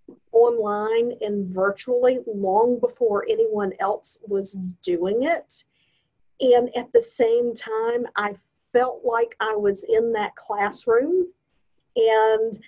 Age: 50-69